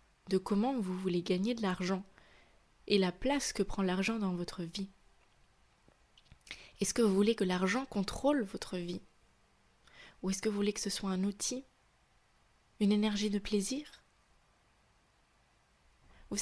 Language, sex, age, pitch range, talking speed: French, female, 20-39, 185-230 Hz, 145 wpm